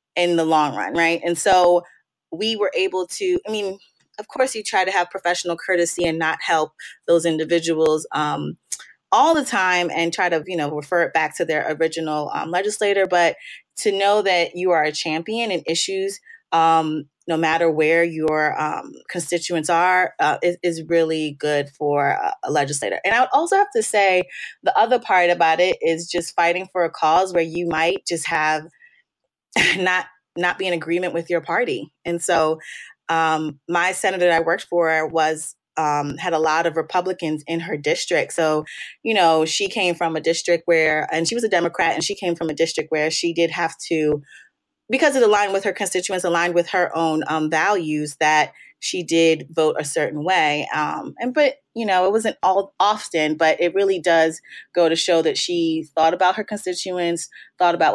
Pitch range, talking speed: 160-185 Hz, 195 wpm